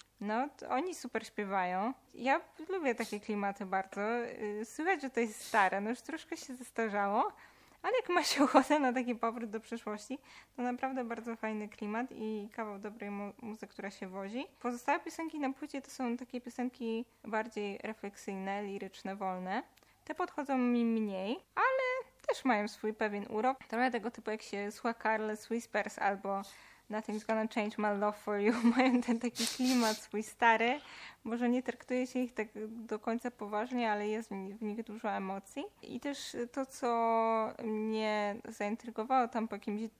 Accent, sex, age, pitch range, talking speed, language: native, female, 20-39, 205-245 Hz, 170 wpm, Polish